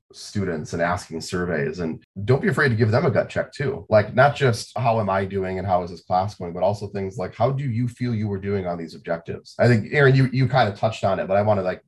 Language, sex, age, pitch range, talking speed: English, male, 30-49, 95-110 Hz, 290 wpm